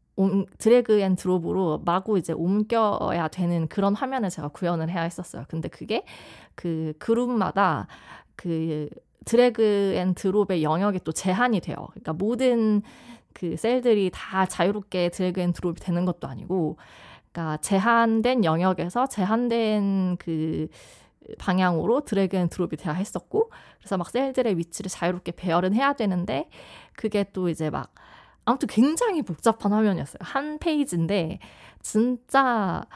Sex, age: female, 20-39